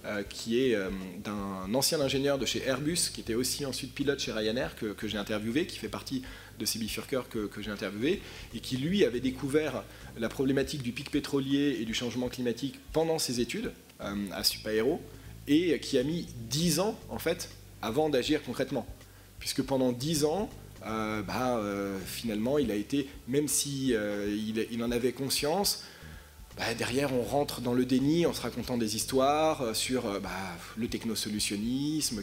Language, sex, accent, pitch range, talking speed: French, male, French, 105-140 Hz, 175 wpm